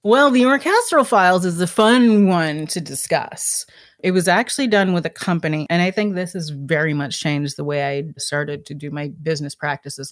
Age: 30-49